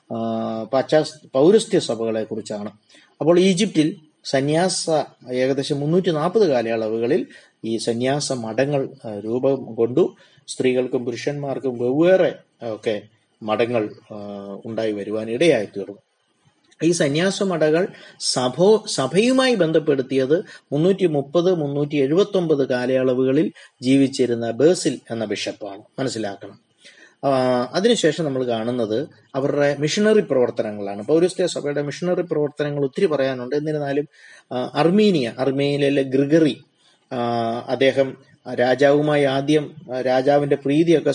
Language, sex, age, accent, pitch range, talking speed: Malayalam, male, 30-49, native, 125-155 Hz, 85 wpm